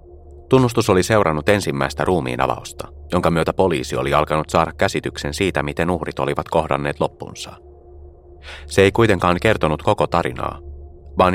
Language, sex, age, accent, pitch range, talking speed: Finnish, male, 30-49, native, 70-95 Hz, 130 wpm